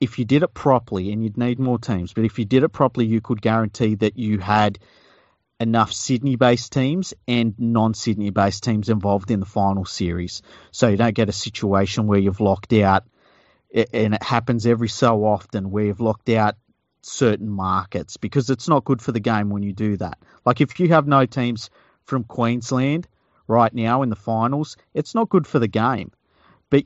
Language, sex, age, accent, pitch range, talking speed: English, male, 40-59, Australian, 105-125 Hz, 190 wpm